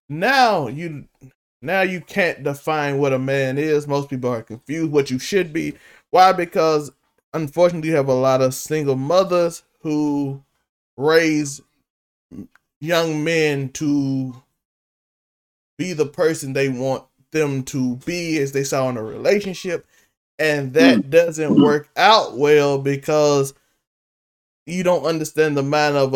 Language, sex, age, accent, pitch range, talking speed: English, male, 20-39, American, 130-155 Hz, 140 wpm